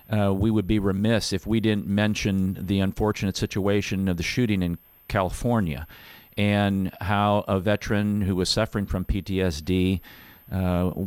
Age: 50-69